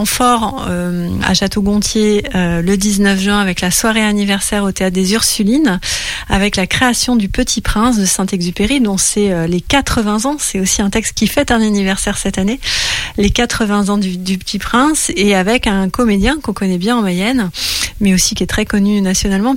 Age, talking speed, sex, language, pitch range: 30-49, 195 wpm, female, French, 185-225 Hz